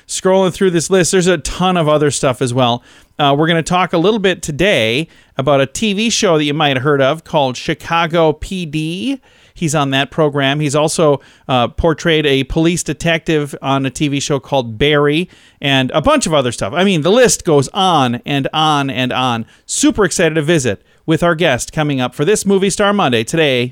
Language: English